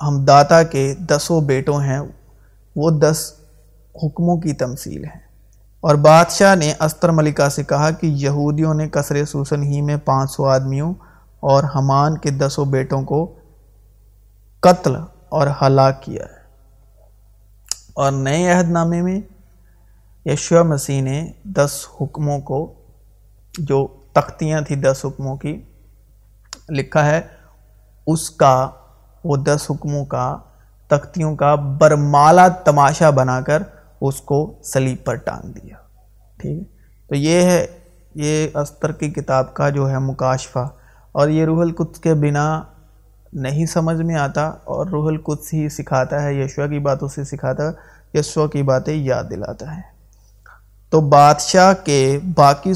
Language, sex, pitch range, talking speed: Urdu, male, 130-155 Hz, 140 wpm